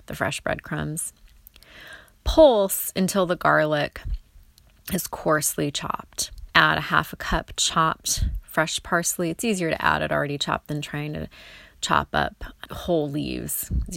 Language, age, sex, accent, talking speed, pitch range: English, 30-49, female, American, 140 wpm, 145-200 Hz